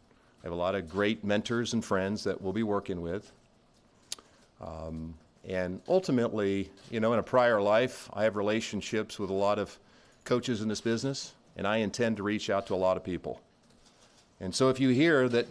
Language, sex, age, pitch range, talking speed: English, male, 50-69, 95-115 Hz, 195 wpm